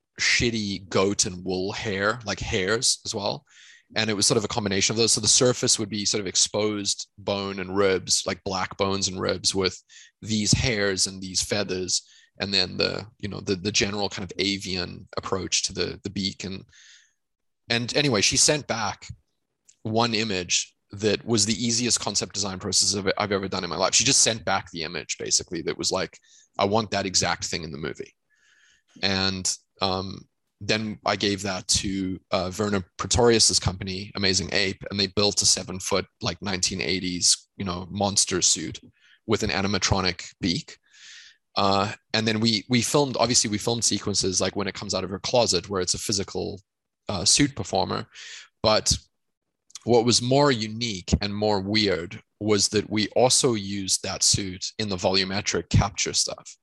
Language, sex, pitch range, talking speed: English, male, 95-110 Hz, 180 wpm